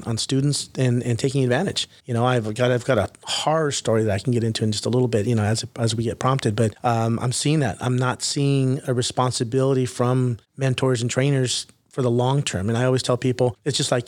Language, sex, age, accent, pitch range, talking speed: English, male, 30-49, American, 120-140 Hz, 245 wpm